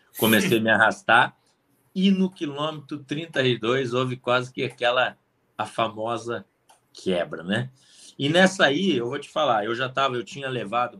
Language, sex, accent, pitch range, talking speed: Portuguese, male, Brazilian, 110-145 Hz, 160 wpm